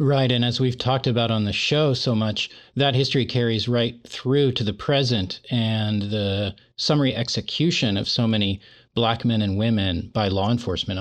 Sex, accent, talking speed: male, American, 180 wpm